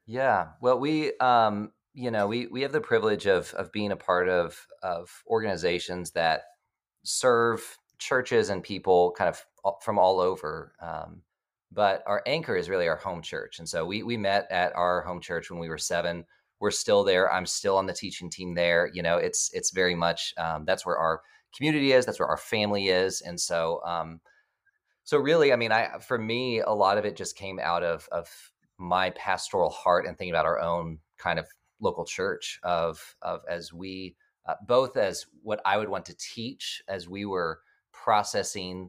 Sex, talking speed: male, 195 wpm